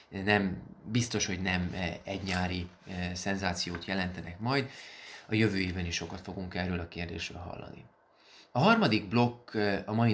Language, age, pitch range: Hungarian, 30-49, 95-120 Hz